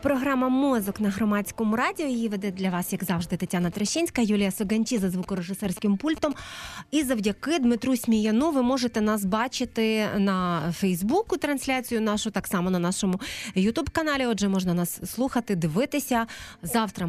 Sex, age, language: female, 30-49, Ukrainian